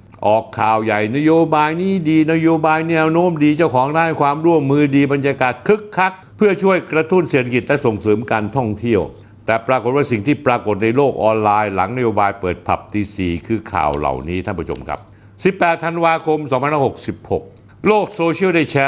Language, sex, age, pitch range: Thai, male, 60-79, 105-150 Hz